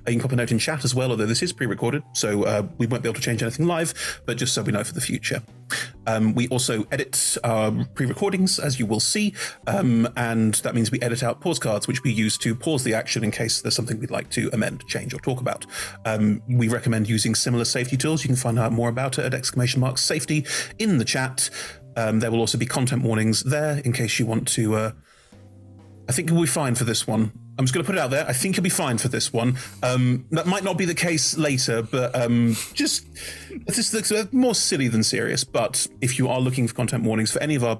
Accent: British